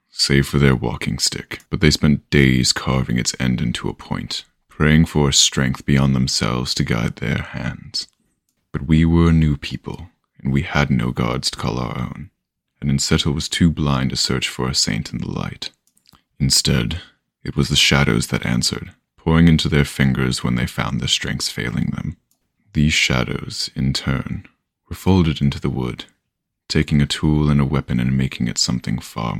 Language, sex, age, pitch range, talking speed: English, male, 20-39, 65-75 Hz, 180 wpm